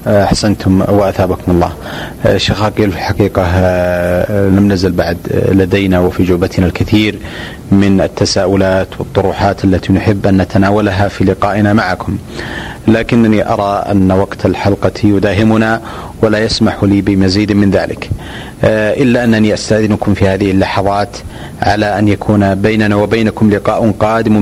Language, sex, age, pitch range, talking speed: Arabic, male, 30-49, 95-110 Hz, 120 wpm